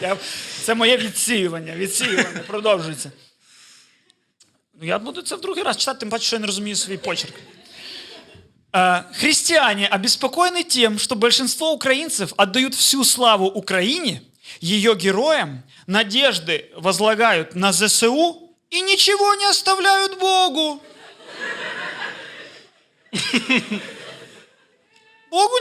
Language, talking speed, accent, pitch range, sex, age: Ukrainian, 100 wpm, native, 210-295 Hz, male, 30-49